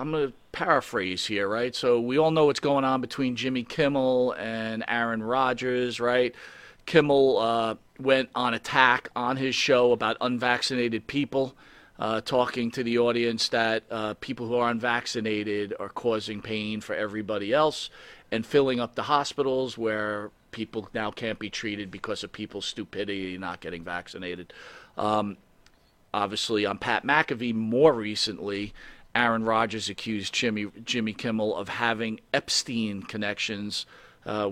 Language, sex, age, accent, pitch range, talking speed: English, male, 40-59, American, 105-125 Hz, 145 wpm